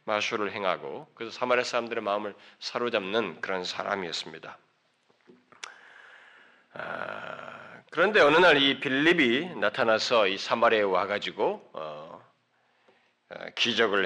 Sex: male